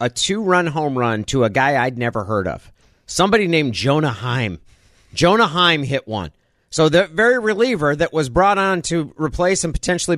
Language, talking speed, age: English, 185 wpm, 50-69